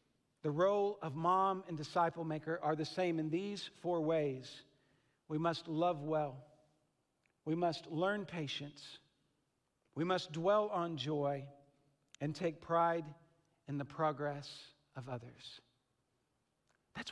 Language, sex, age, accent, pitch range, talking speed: English, male, 50-69, American, 155-215 Hz, 125 wpm